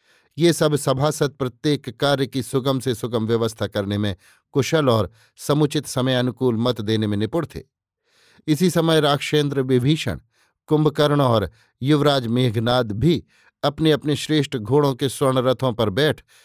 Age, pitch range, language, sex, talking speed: 50-69, 120-145 Hz, Hindi, male, 140 wpm